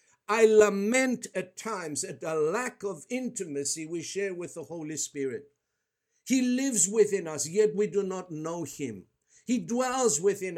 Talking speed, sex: 160 wpm, male